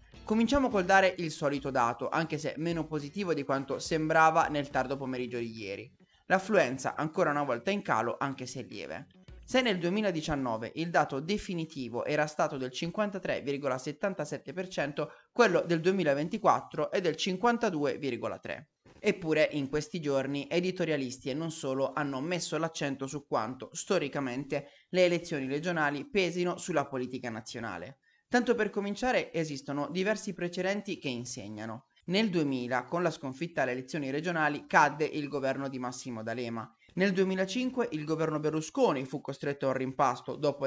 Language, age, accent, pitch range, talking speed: Italian, 30-49, native, 135-185 Hz, 140 wpm